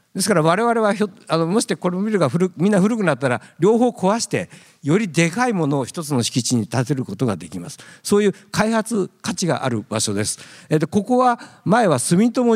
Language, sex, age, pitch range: Japanese, male, 50-69, 130-185 Hz